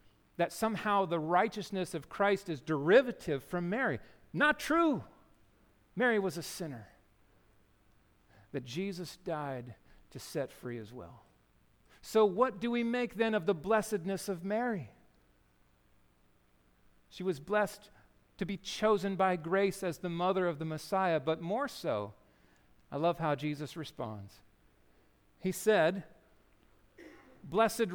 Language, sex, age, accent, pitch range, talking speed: English, male, 50-69, American, 150-210 Hz, 130 wpm